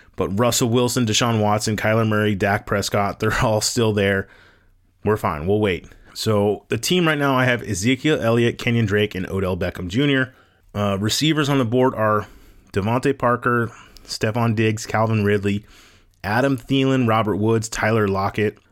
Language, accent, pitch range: English, American, 100-120 Hz